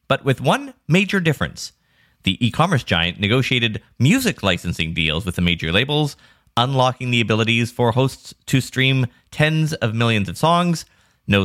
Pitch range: 95-140 Hz